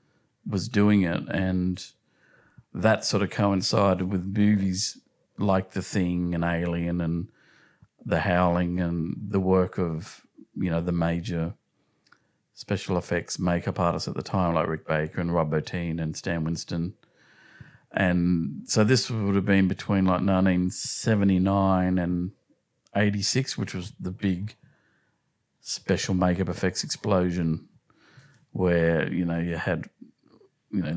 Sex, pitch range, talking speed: male, 85-100 Hz, 130 wpm